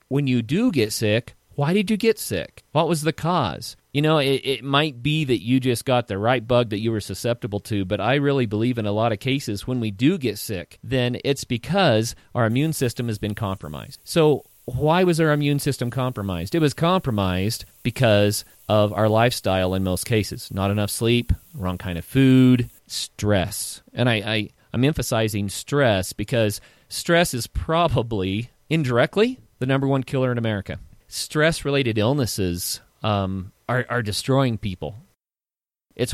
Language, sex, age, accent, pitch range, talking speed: English, male, 40-59, American, 105-135 Hz, 170 wpm